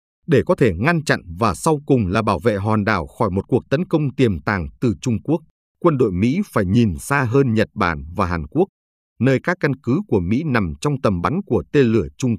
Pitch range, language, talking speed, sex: 95-140 Hz, Vietnamese, 235 wpm, male